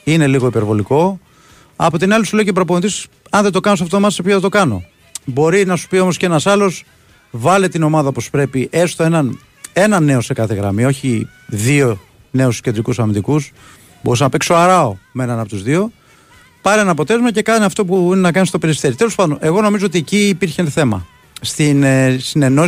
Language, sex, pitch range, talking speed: Greek, male, 125-180 Hz, 205 wpm